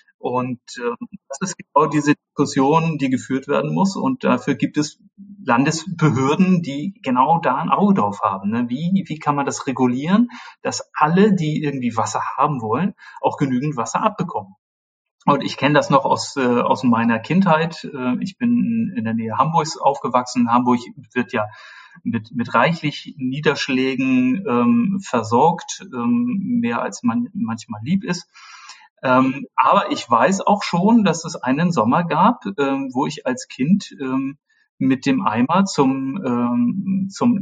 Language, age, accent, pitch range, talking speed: German, 40-59, German, 125-200 Hz, 150 wpm